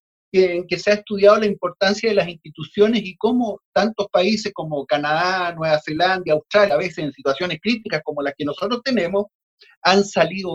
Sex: male